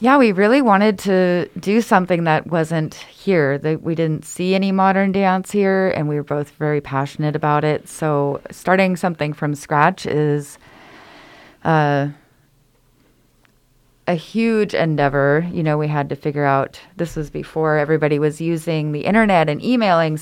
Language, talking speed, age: English, 155 wpm, 30-49